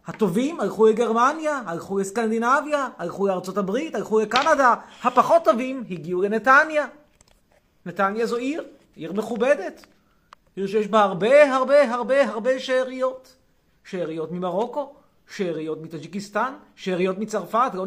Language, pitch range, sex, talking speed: Hebrew, 175-235 Hz, male, 110 wpm